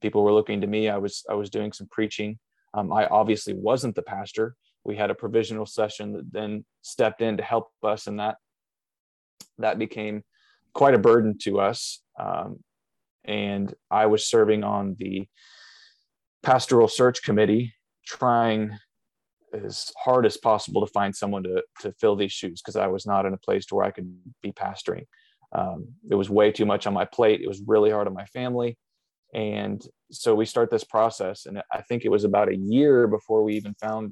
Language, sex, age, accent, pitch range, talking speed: English, male, 20-39, American, 105-115 Hz, 190 wpm